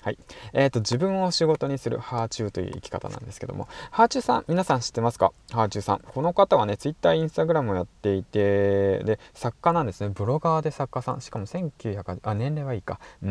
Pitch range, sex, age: 100-130 Hz, male, 20-39